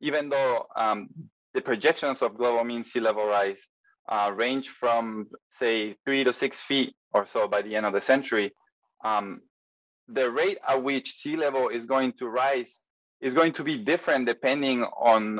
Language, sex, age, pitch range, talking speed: English, male, 20-39, 110-135 Hz, 175 wpm